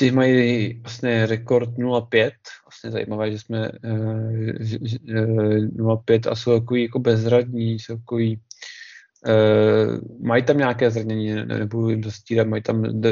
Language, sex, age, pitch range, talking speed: Czech, male, 20-39, 110-120 Hz, 130 wpm